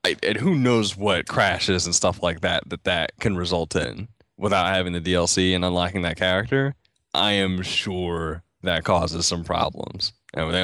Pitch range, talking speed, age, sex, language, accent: 90-105 Hz, 175 wpm, 20-39, male, English, American